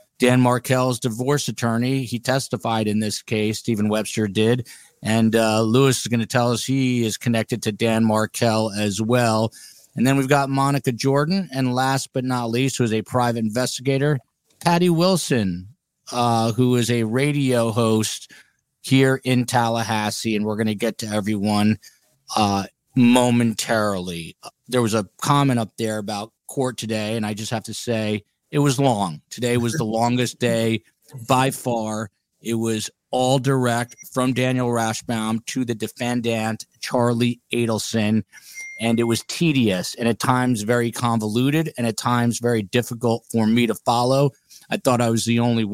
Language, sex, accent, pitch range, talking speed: English, male, American, 110-125 Hz, 165 wpm